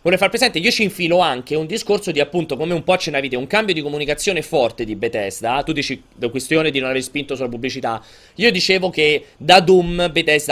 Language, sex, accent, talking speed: Italian, male, native, 220 wpm